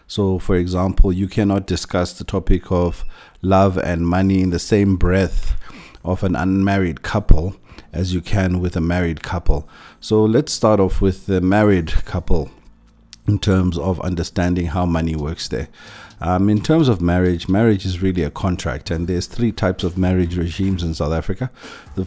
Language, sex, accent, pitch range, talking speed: English, male, South African, 90-105 Hz, 175 wpm